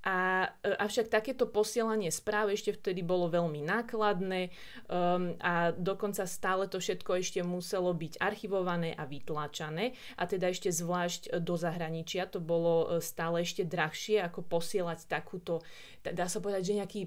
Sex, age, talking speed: female, 30-49, 140 wpm